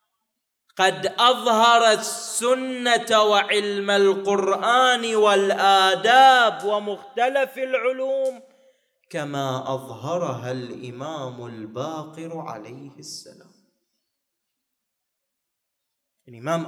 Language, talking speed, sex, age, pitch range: Arabic, 55 wpm, male, 30-49, 155-230 Hz